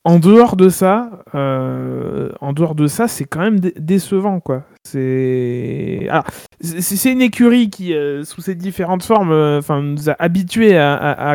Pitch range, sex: 145-185 Hz, male